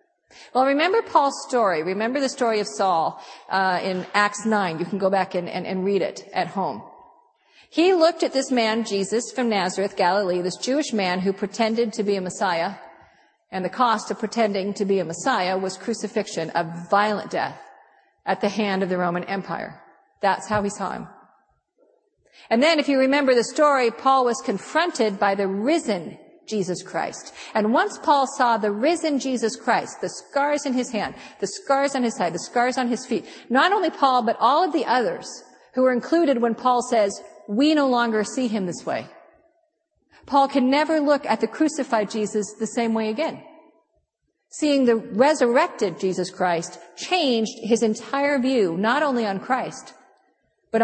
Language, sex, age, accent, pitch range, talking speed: English, female, 50-69, American, 200-275 Hz, 180 wpm